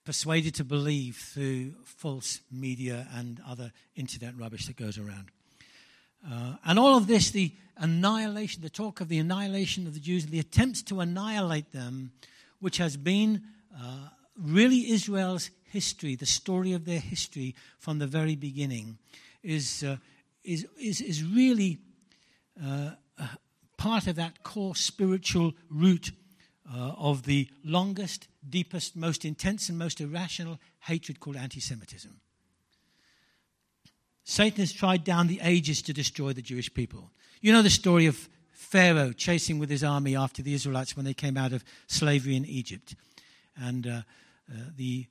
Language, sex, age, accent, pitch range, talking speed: English, male, 60-79, British, 135-185 Hz, 150 wpm